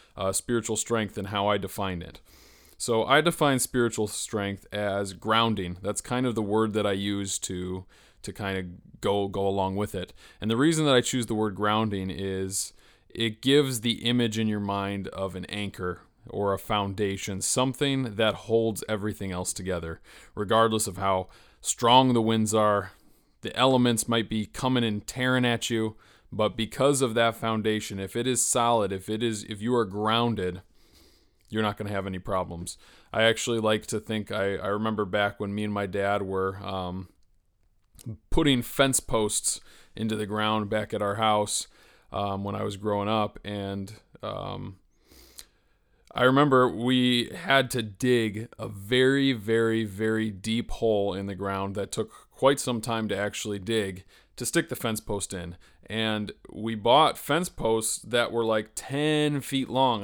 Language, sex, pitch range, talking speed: English, male, 100-115 Hz, 175 wpm